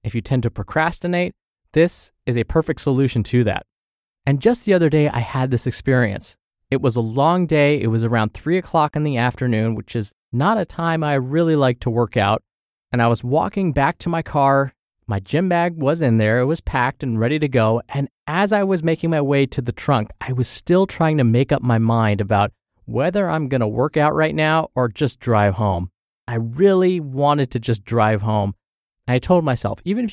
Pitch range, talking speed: 115-155 Hz, 215 wpm